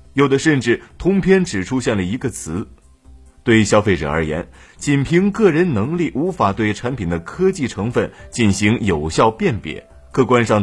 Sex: male